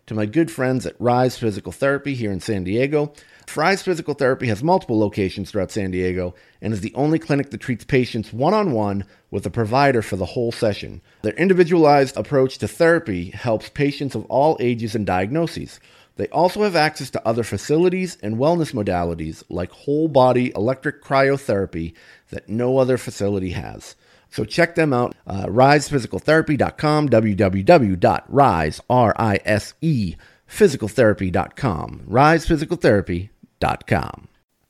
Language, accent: English, American